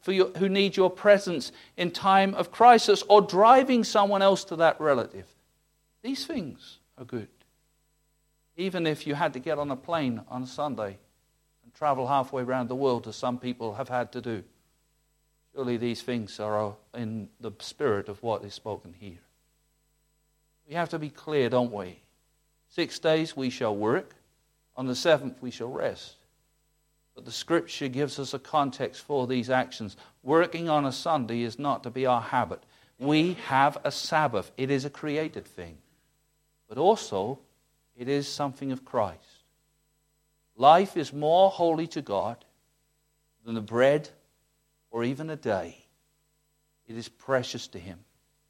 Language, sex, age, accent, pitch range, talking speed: English, male, 50-69, British, 125-155 Hz, 160 wpm